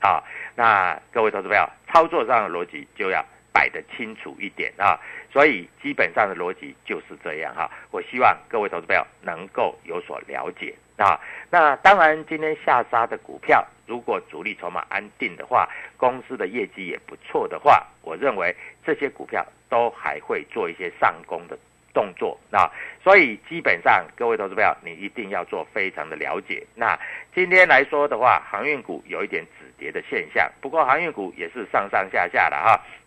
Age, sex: 50-69, male